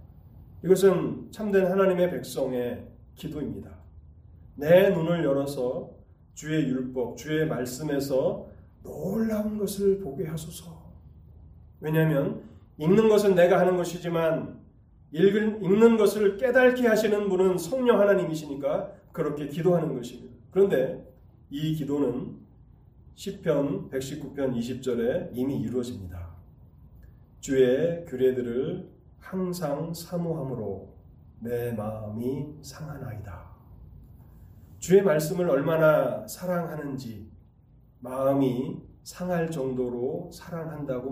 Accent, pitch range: native, 125-180 Hz